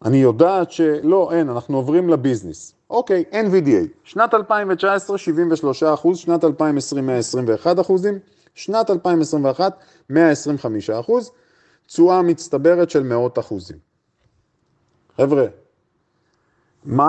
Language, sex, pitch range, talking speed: Hebrew, male, 145-190 Hz, 100 wpm